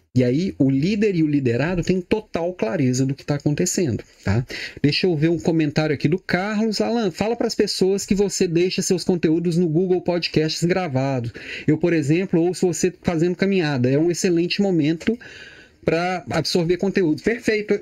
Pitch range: 150-200 Hz